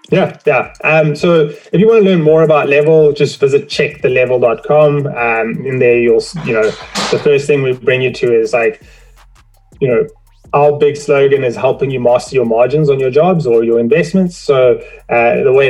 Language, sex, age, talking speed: English, male, 20-39, 195 wpm